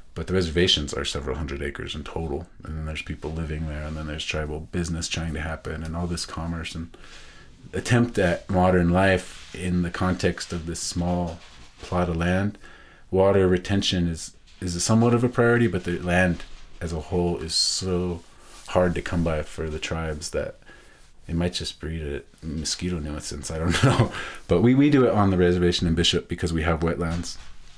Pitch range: 80-90 Hz